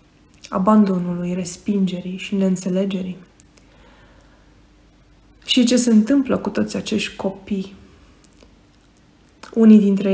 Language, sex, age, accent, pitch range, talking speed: Romanian, female, 20-39, native, 195-215 Hz, 85 wpm